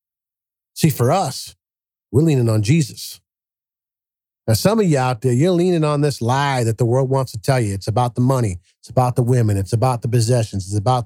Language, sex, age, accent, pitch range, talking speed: English, male, 50-69, American, 110-160 Hz, 210 wpm